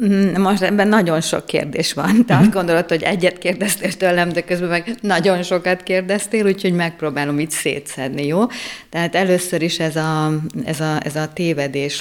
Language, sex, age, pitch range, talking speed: Hungarian, female, 50-69, 145-175 Hz, 155 wpm